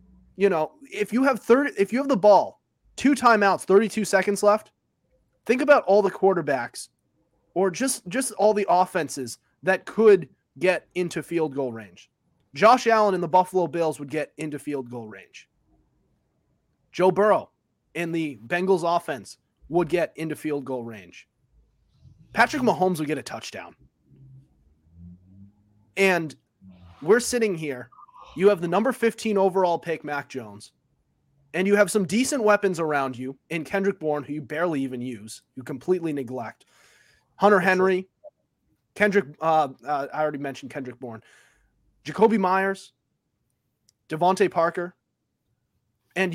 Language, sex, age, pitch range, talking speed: English, male, 30-49, 140-205 Hz, 140 wpm